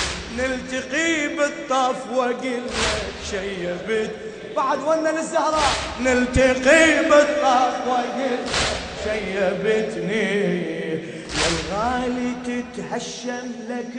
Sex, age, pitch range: male, 30-49, 220-265 Hz